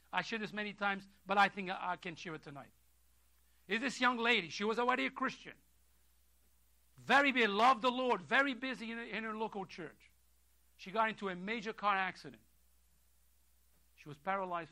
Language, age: English, 50-69